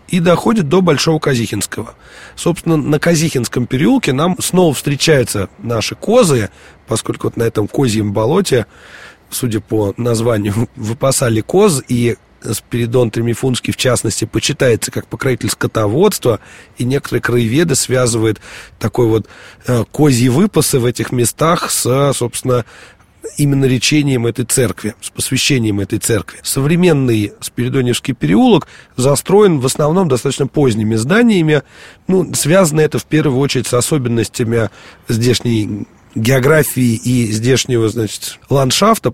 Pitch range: 115-150 Hz